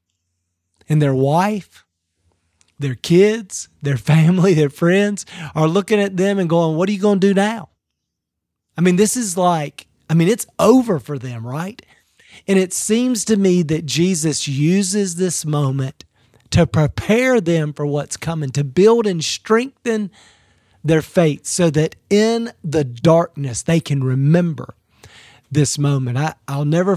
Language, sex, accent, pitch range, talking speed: English, male, American, 140-185 Hz, 150 wpm